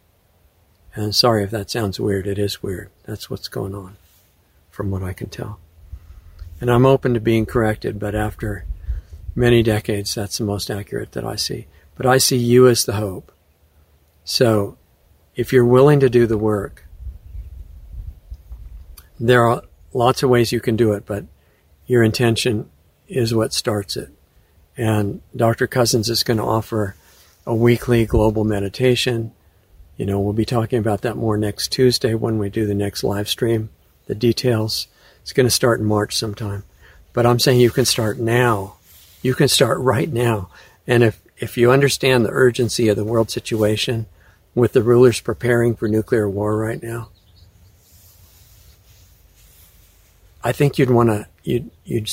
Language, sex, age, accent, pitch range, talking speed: English, male, 60-79, American, 95-120 Hz, 160 wpm